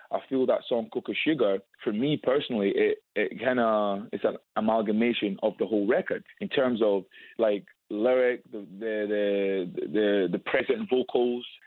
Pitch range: 110-140 Hz